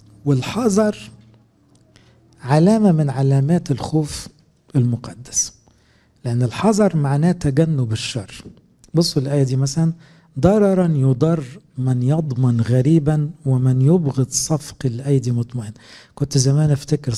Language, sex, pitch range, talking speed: English, male, 125-160 Hz, 100 wpm